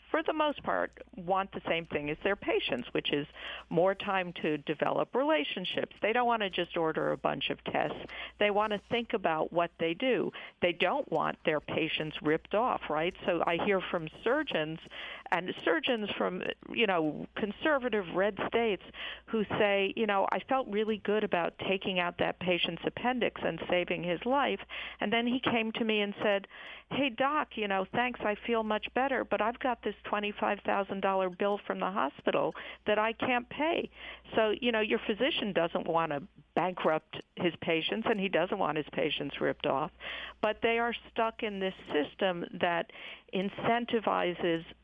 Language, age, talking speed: English, 50-69, 175 wpm